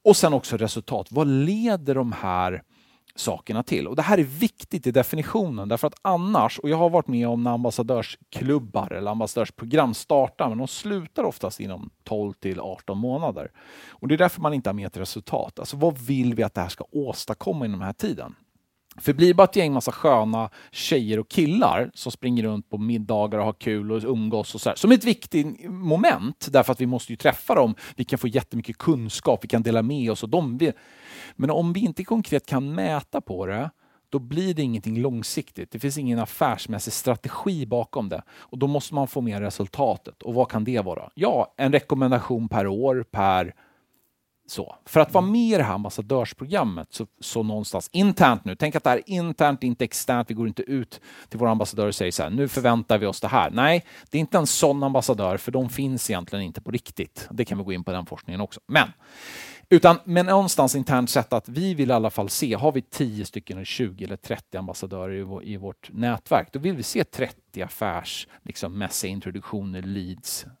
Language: Swedish